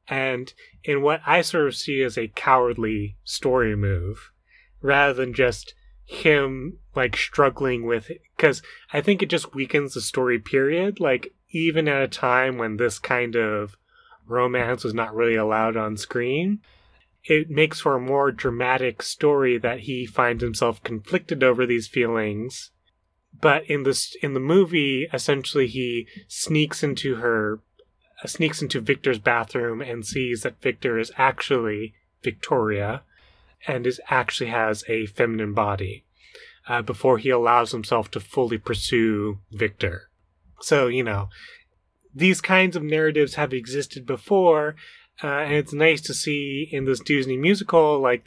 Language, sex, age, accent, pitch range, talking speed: English, male, 20-39, American, 115-145 Hz, 150 wpm